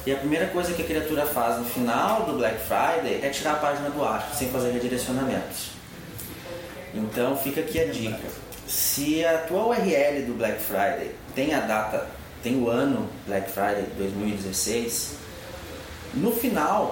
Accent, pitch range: Brazilian, 115-150 Hz